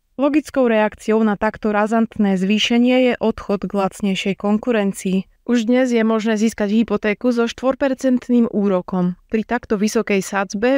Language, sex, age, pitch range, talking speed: Slovak, female, 20-39, 200-235 Hz, 135 wpm